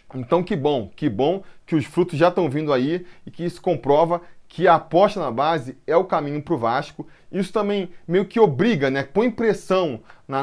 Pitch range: 135-175 Hz